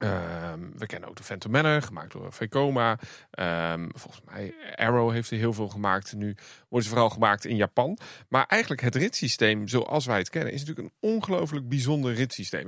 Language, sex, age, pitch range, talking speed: Dutch, male, 40-59, 120-170 Hz, 190 wpm